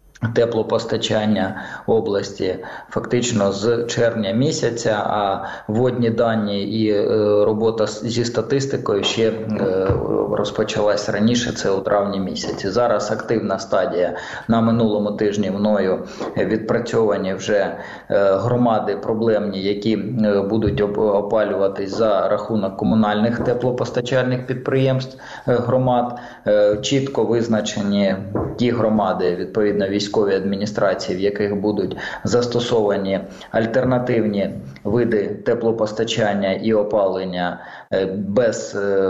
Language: Ukrainian